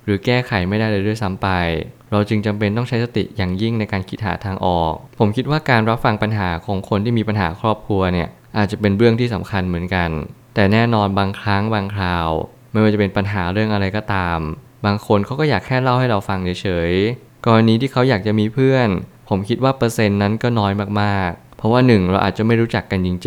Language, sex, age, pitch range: Thai, male, 20-39, 100-120 Hz